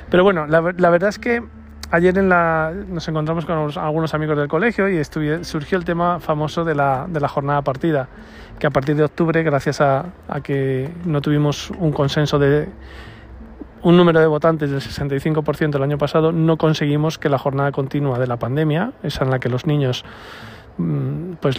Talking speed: 190 wpm